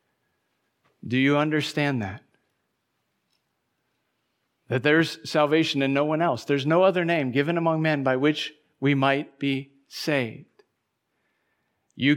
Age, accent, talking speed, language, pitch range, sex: 50-69, American, 125 wpm, English, 125-145 Hz, male